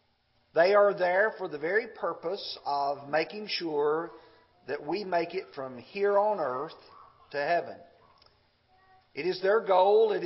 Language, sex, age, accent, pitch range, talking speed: English, male, 50-69, American, 145-245 Hz, 145 wpm